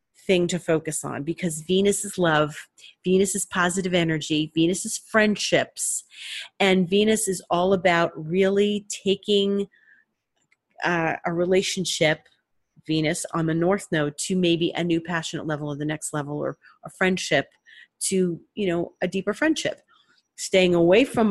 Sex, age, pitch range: female, 40-59, 165-210 Hz